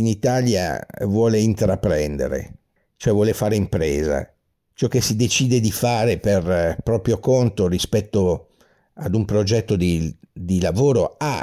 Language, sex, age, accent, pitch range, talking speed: Italian, male, 50-69, native, 95-125 Hz, 130 wpm